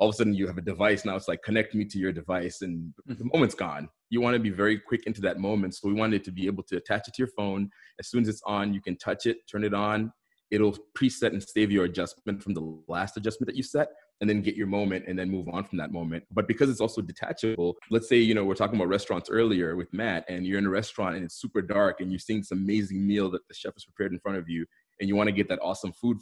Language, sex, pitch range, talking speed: English, male, 95-110 Hz, 290 wpm